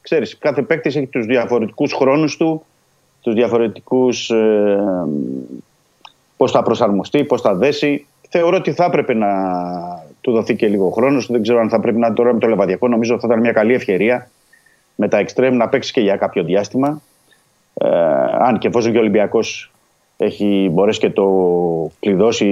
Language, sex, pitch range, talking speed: Greek, male, 100-135 Hz, 175 wpm